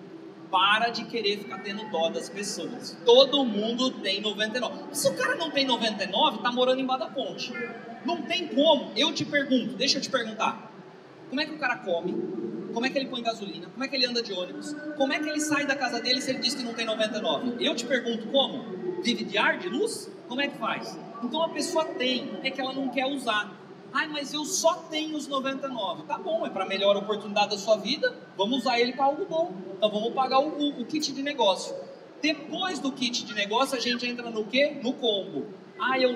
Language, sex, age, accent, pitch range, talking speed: Portuguese, male, 30-49, Brazilian, 220-275 Hz, 220 wpm